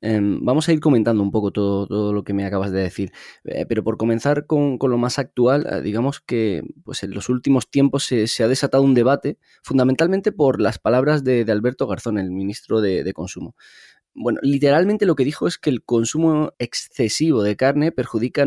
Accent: Spanish